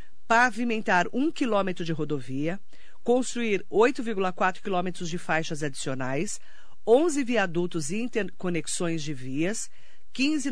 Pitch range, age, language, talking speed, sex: 165-210 Hz, 50-69, Portuguese, 110 wpm, female